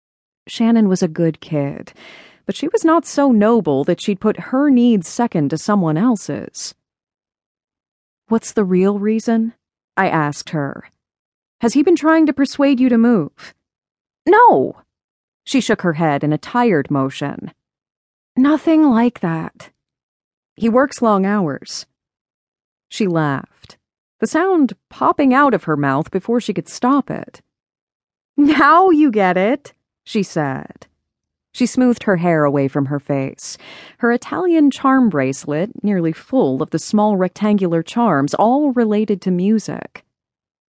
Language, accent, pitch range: English, American, 185-290 Hz